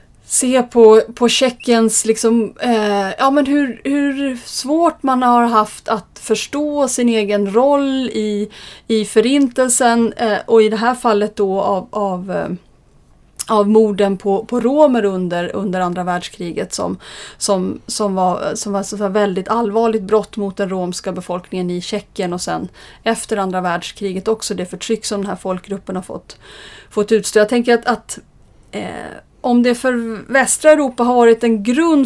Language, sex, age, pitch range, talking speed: Swedish, female, 30-49, 200-235 Hz, 165 wpm